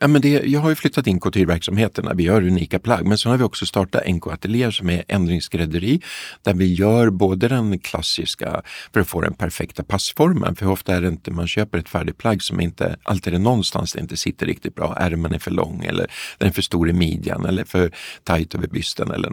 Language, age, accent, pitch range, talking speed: Swedish, 50-69, native, 85-105 Hz, 225 wpm